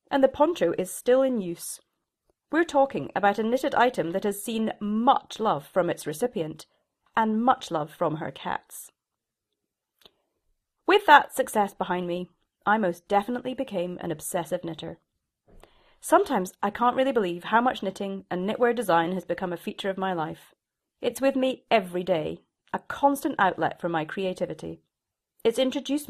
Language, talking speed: English, 160 wpm